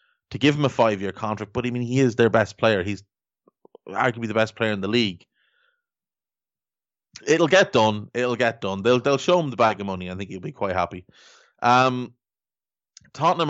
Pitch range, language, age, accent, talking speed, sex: 100-125 Hz, English, 30-49, Irish, 195 wpm, male